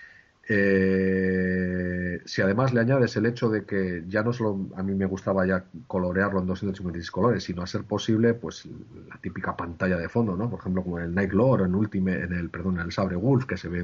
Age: 40-59